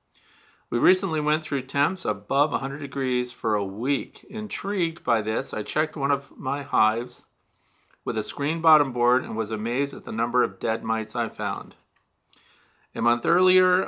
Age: 40-59